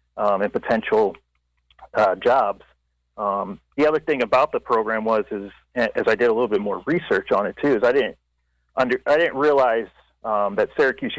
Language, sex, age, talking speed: English, male, 40-59, 190 wpm